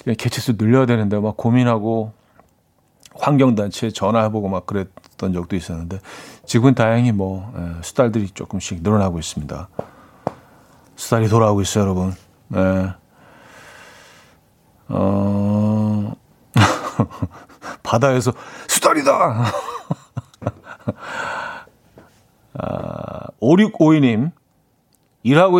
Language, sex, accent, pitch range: Korean, male, native, 100-145 Hz